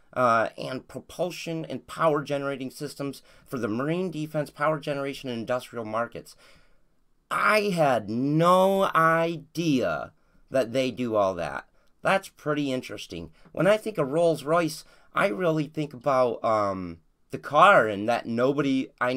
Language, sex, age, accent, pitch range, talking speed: English, male, 30-49, American, 115-165 Hz, 140 wpm